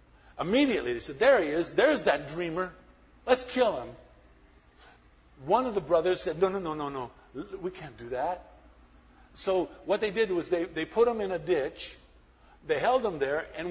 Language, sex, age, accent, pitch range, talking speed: English, male, 50-69, American, 155-245 Hz, 190 wpm